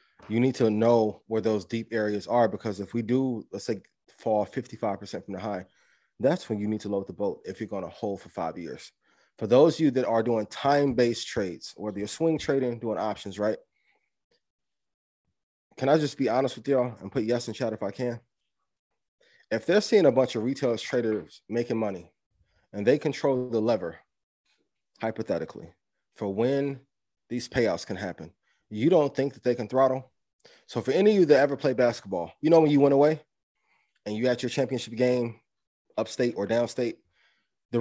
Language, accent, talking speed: English, American, 190 wpm